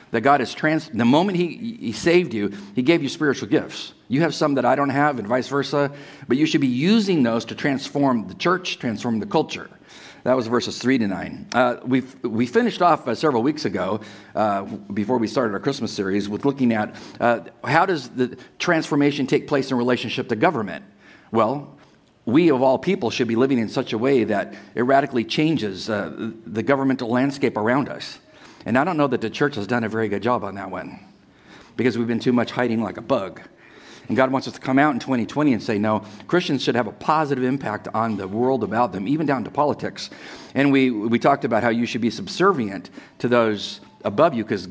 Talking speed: 220 wpm